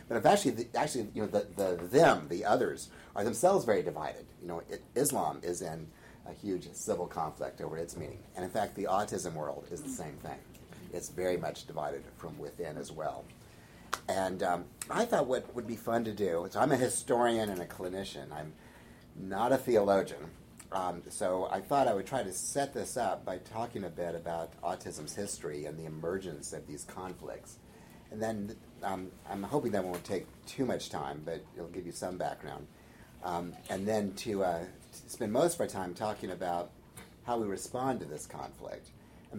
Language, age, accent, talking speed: English, 50-69, American, 200 wpm